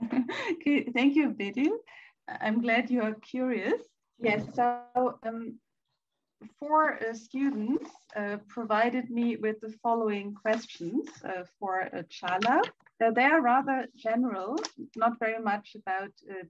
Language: Turkish